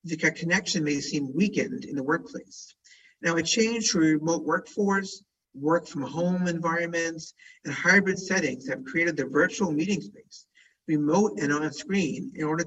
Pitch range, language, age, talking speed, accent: 145-195 Hz, English, 50-69, 155 wpm, American